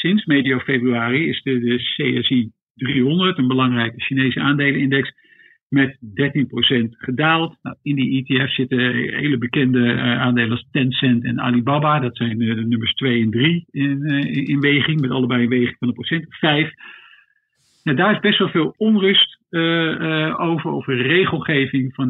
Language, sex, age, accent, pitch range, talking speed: Dutch, male, 50-69, Dutch, 125-175 Hz, 165 wpm